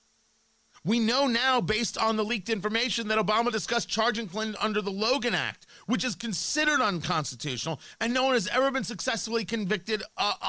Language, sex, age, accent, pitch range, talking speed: English, male, 40-59, American, 175-235 Hz, 170 wpm